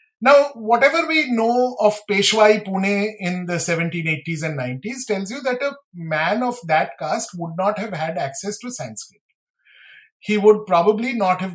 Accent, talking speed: Indian, 165 wpm